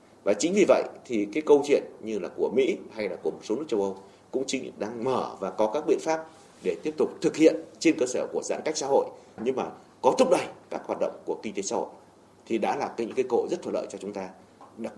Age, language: 30-49, Vietnamese